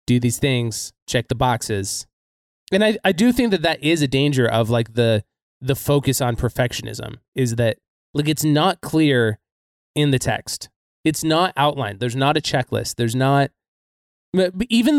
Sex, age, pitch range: male, 20-39, 115-150 Hz